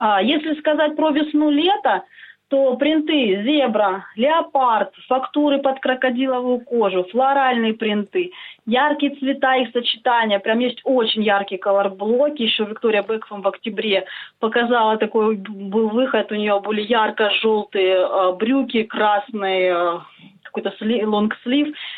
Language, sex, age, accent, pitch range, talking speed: Russian, female, 20-39, native, 210-275 Hz, 110 wpm